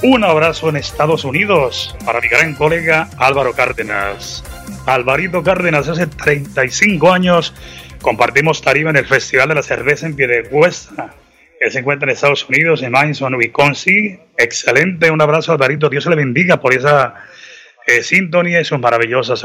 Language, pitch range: Spanish, 105-160 Hz